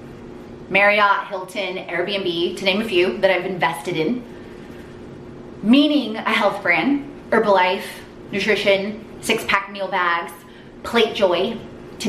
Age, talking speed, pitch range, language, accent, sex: 20-39, 120 wpm, 185-225 Hz, English, American, female